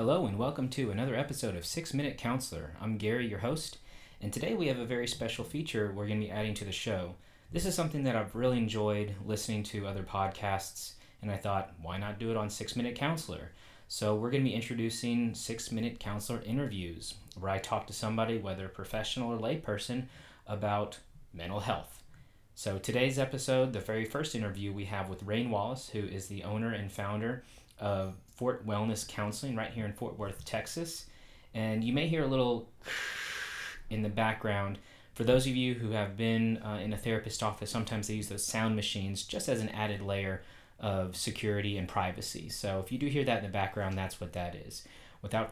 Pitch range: 100-120 Hz